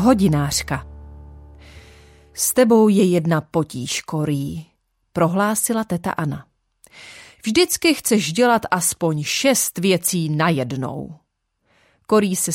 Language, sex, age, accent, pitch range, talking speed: Czech, female, 30-49, native, 160-215 Hz, 95 wpm